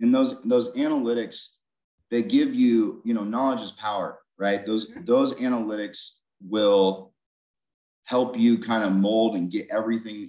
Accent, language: American, English